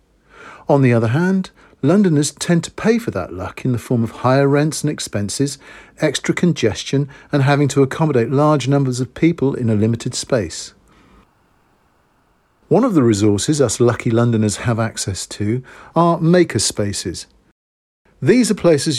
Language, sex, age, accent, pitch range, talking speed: English, male, 50-69, British, 115-160 Hz, 155 wpm